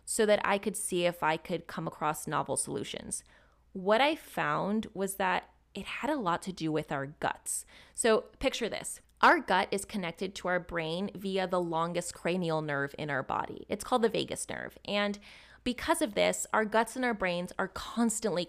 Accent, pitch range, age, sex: American, 170-215 Hz, 20-39, female